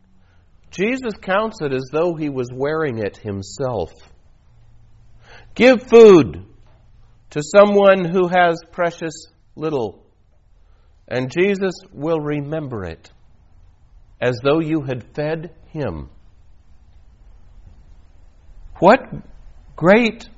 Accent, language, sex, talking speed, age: American, English, male, 90 wpm, 50-69